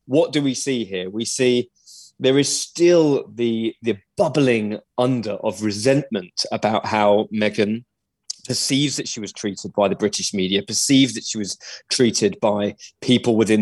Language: English